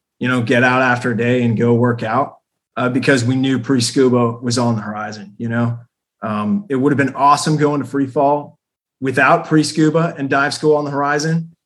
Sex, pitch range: male, 120-140 Hz